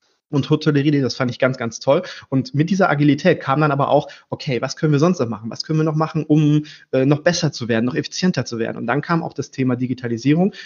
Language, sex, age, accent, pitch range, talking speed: German, male, 30-49, German, 125-150 Hz, 255 wpm